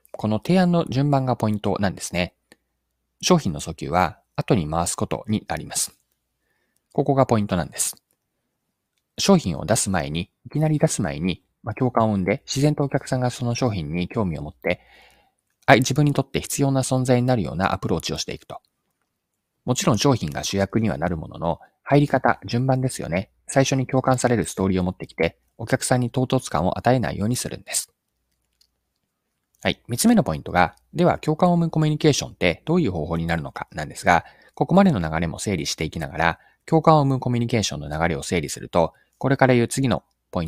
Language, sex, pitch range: Japanese, male, 85-135 Hz